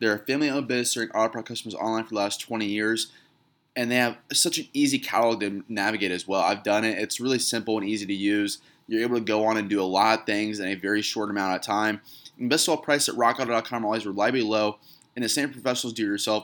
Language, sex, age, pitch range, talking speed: English, male, 20-39, 105-135 Hz, 255 wpm